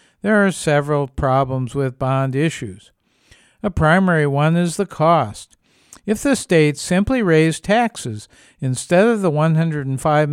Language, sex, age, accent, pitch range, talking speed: English, male, 50-69, American, 140-185 Hz, 135 wpm